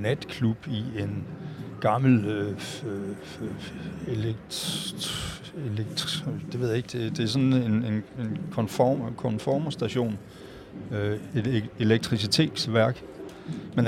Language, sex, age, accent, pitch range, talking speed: Danish, male, 60-79, native, 105-130 Hz, 115 wpm